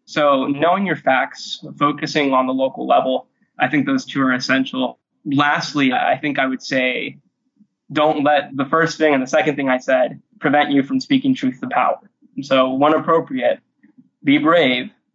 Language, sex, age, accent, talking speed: English, male, 20-39, American, 175 wpm